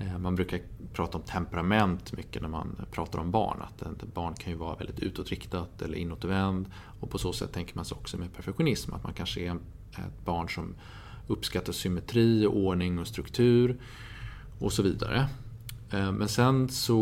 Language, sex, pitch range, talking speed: Swedish, male, 90-110 Hz, 175 wpm